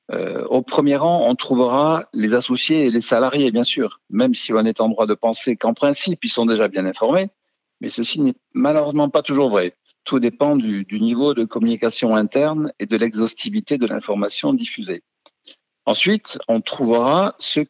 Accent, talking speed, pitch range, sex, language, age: French, 175 wpm, 110-170 Hz, male, French, 50-69